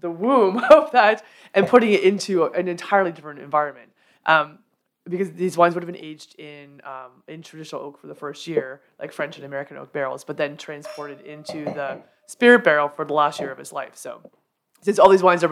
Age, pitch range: 20-39, 150-185 Hz